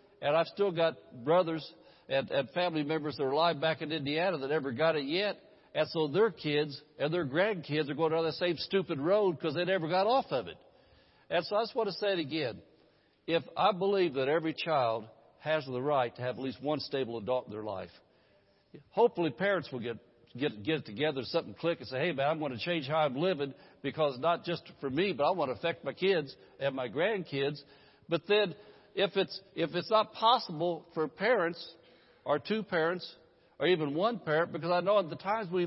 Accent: American